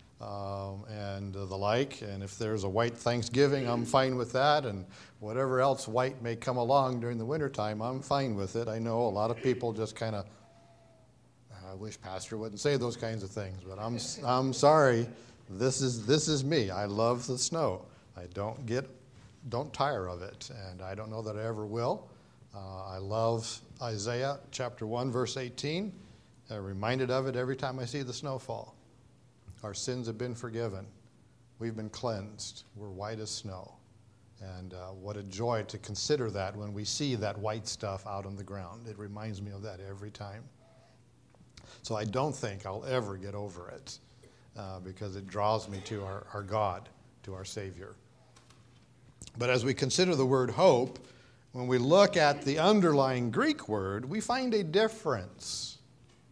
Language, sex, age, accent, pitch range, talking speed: English, male, 60-79, American, 105-130 Hz, 180 wpm